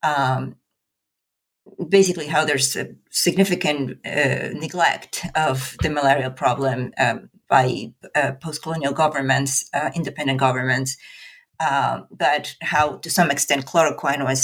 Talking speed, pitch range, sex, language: 130 wpm, 135-160 Hz, female, English